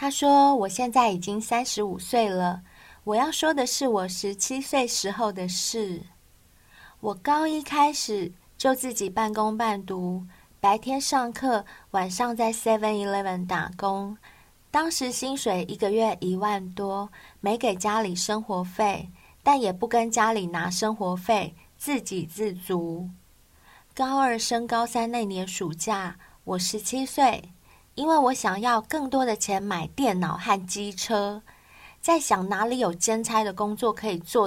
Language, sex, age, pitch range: Chinese, female, 20-39, 195-245 Hz